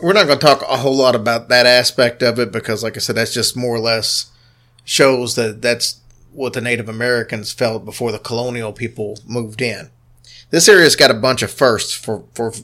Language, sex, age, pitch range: English, male, 40-59, 115-125 Hz